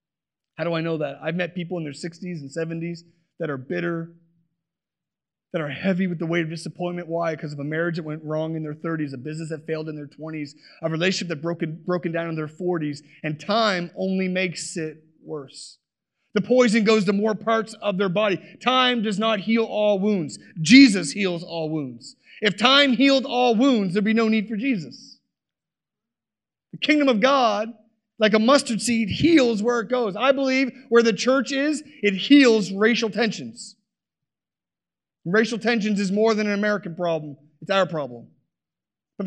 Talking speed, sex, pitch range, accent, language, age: 185 wpm, male, 165-245 Hz, American, English, 30-49